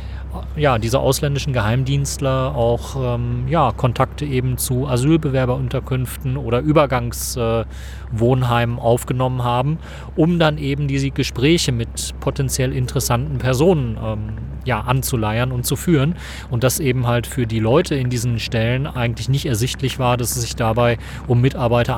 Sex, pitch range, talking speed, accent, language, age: male, 115-135 Hz, 135 wpm, German, German, 30-49